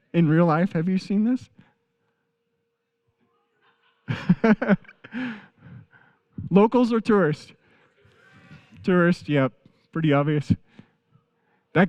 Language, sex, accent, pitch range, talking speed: English, male, American, 145-195 Hz, 80 wpm